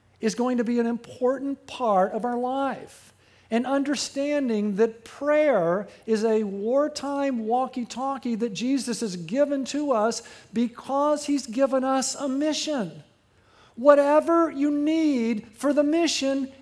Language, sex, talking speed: English, male, 135 wpm